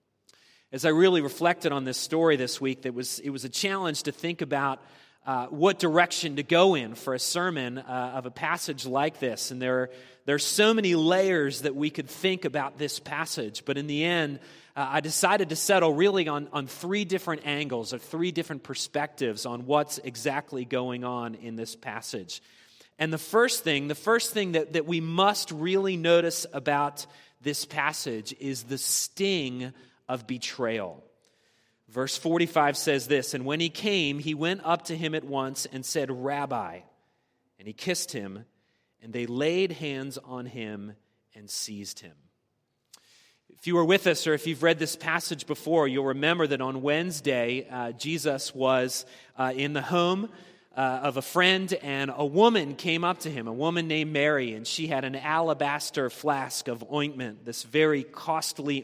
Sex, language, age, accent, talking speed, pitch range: male, English, 30-49, American, 175 wpm, 130-165 Hz